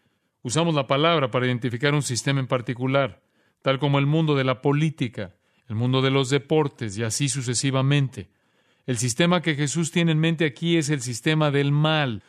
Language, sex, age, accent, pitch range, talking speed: Spanish, male, 40-59, Mexican, 125-150 Hz, 180 wpm